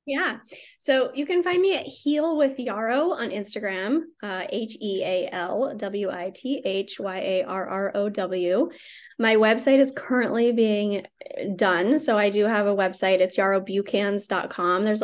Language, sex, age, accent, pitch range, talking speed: English, female, 10-29, American, 195-235 Hz, 170 wpm